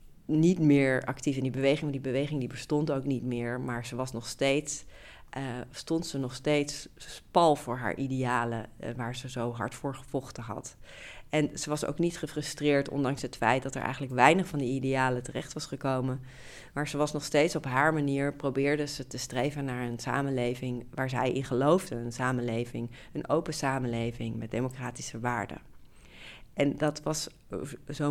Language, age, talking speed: Dutch, 40-59, 185 wpm